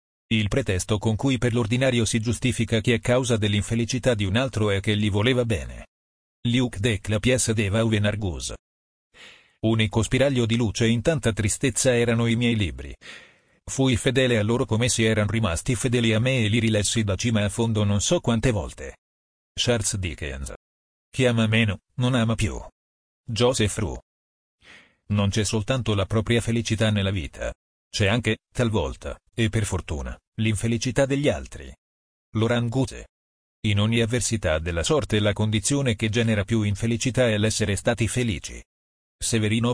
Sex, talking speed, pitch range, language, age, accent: male, 155 wpm, 90-120 Hz, Italian, 40-59, native